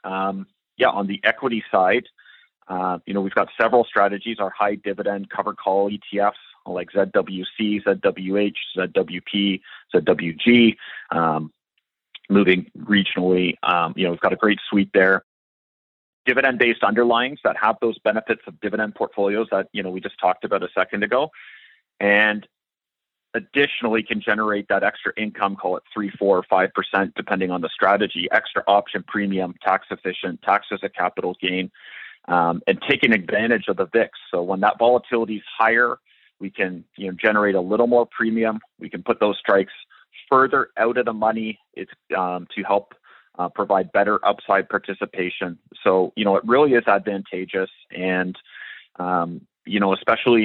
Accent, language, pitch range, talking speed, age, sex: American, English, 95-110 Hz, 160 wpm, 30-49, male